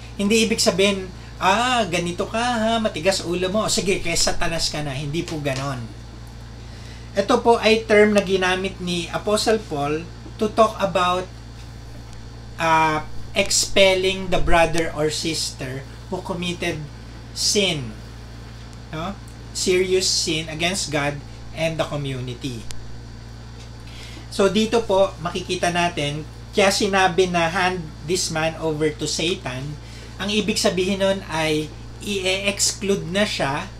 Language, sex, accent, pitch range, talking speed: English, male, Filipino, 140-195 Hz, 125 wpm